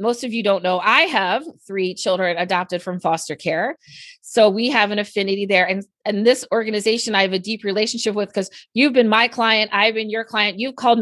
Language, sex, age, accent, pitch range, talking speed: English, female, 30-49, American, 185-240 Hz, 220 wpm